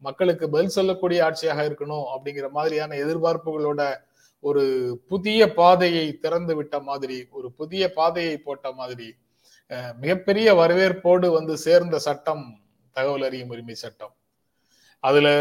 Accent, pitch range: native, 145-180 Hz